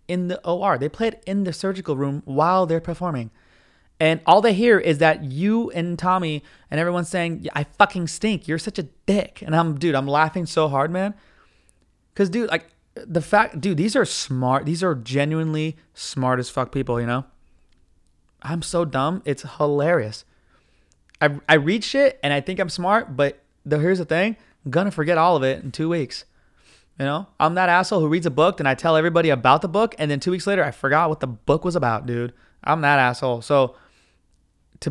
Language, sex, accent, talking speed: English, male, American, 210 wpm